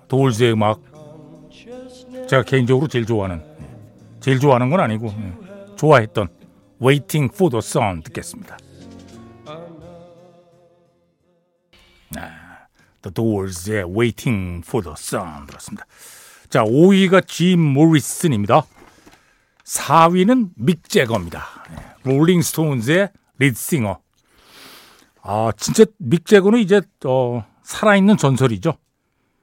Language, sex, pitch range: Korean, male, 125-200 Hz